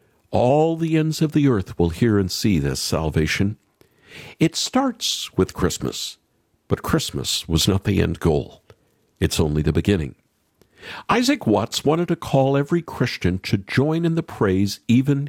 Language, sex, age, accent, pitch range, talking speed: English, male, 50-69, American, 90-140 Hz, 155 wpm